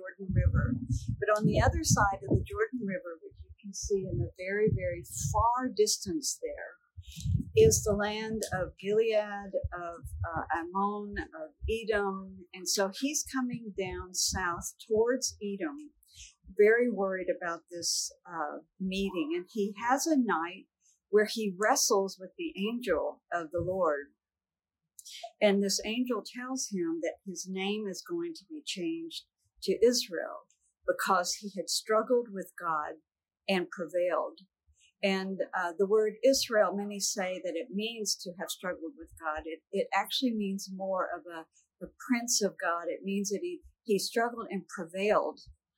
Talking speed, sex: 150 wpm, female